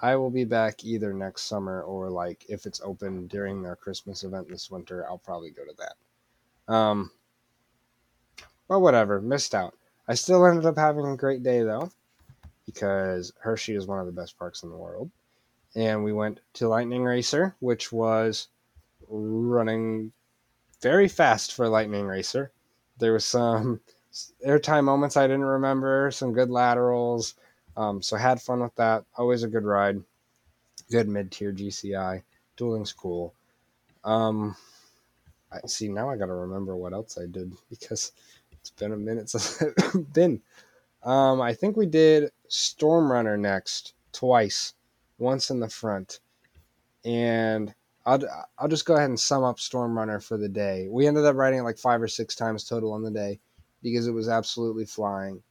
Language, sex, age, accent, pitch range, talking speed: English, male, 20-39, American, 100-125 Hz, 170 wpm